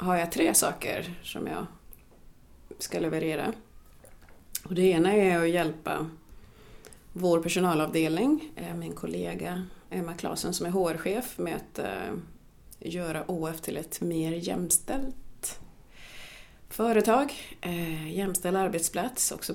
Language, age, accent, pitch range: Swedish, 30-49, native, 160-185 Hz